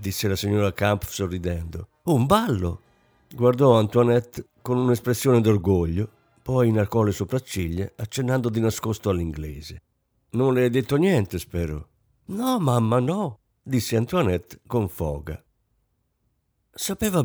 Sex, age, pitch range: male, 50-69, 95-130 Hz